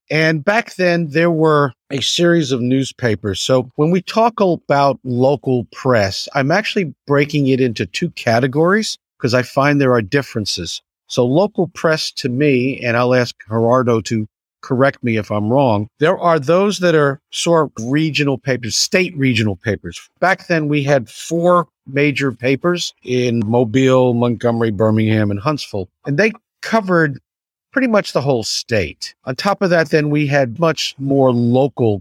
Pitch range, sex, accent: 115-155 Hz, male, American